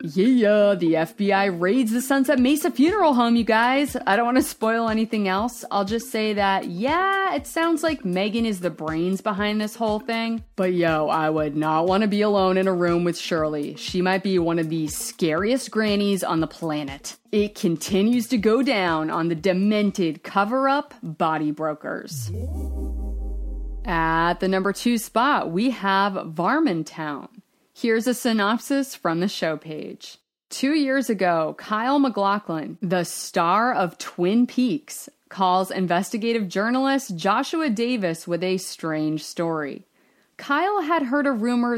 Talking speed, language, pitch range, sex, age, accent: 155 wpm, English, 175-240 Hz, female, 30-49, American